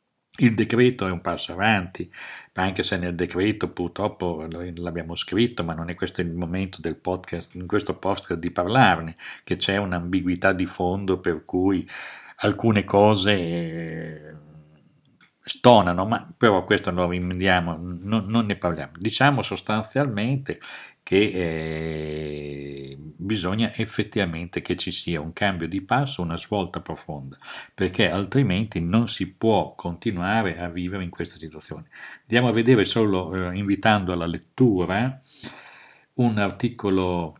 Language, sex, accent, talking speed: Italian, male, native, 130 wpm